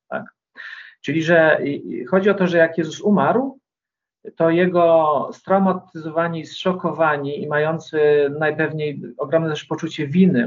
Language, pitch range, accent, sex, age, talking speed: Polish, 150-185 Hz, native, male, 40-59, 115 wpm